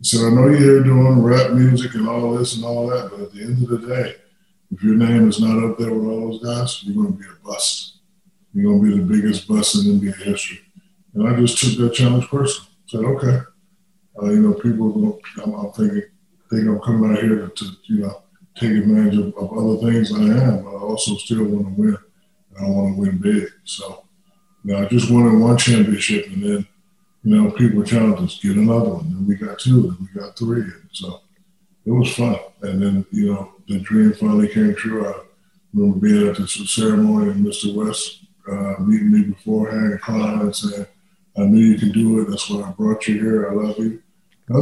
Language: English